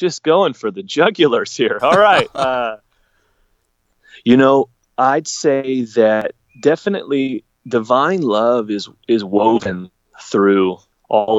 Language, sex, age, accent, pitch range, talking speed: English, male, 30-49, American, 100-135 Hz, 115 wpm